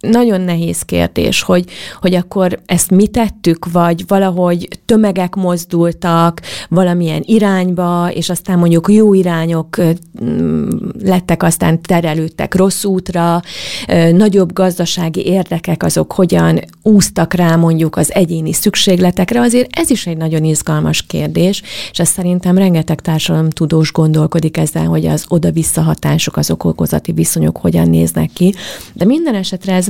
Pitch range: 160-200 Hz